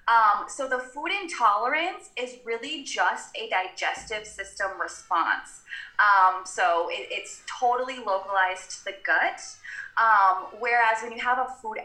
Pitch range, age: 185-255 Hz, 20-39